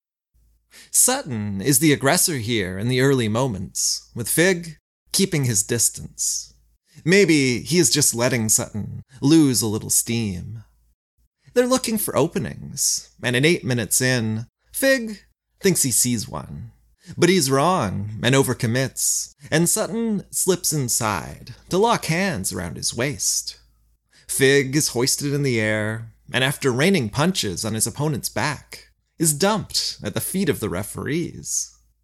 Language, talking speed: English, 140 wpm